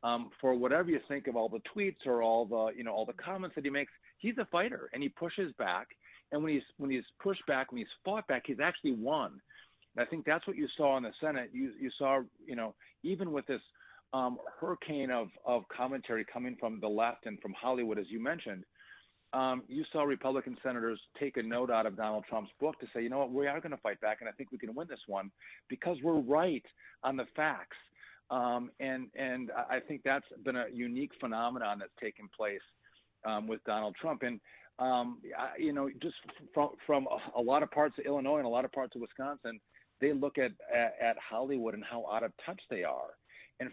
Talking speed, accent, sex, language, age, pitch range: 225 wpm, American, male, English, 40-59, 120-150 Hz